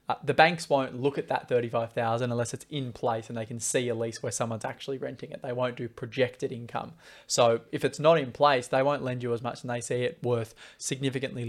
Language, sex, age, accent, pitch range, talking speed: English, male, 20-39, Australian, 125-140 Hz, 240 wpm